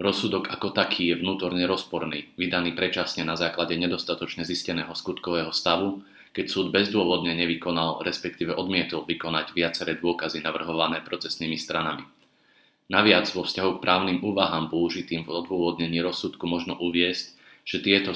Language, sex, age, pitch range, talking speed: Slovak, male, 30-49, 85-95 Hz, 130 wpm